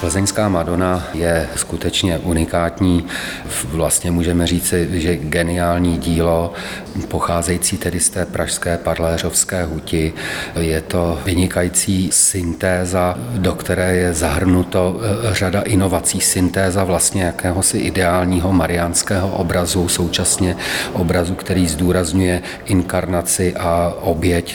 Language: Czech